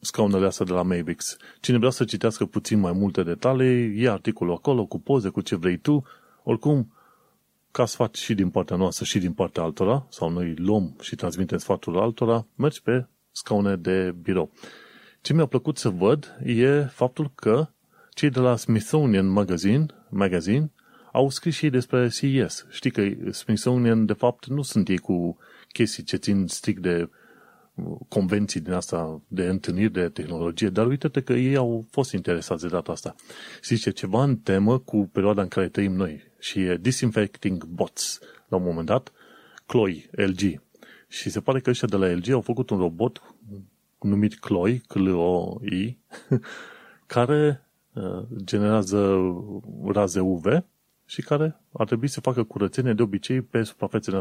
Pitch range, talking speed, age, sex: 95-125 Hz, 165 wpm, 30-49, male